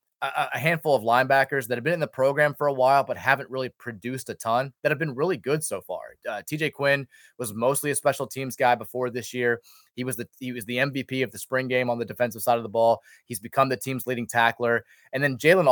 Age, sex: 20-39, male